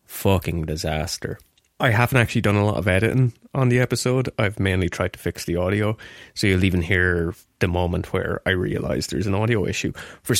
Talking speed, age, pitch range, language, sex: 195 wpm, 20-39, 90-115 Hz, English, male